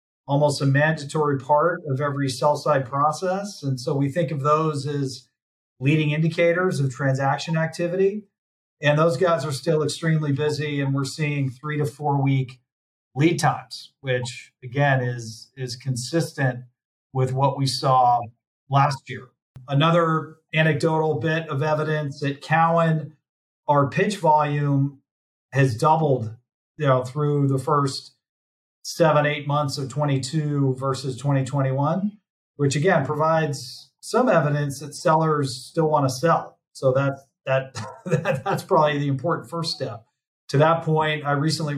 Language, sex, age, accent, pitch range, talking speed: English, male, 40-59, American, 135-155 Hz, 135 wpm